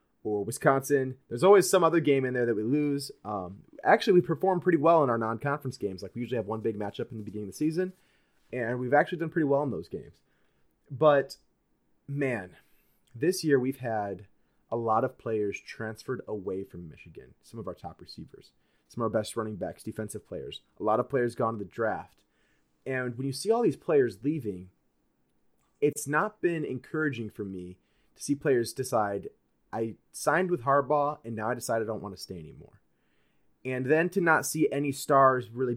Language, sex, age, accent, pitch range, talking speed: English, male, 30-49, American, 110-145 Hz, 200 wpm